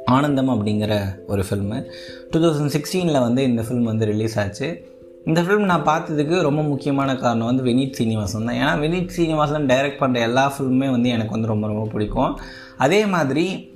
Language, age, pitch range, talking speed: Tamil, 20-39, 110-140 Hz, 170 wpm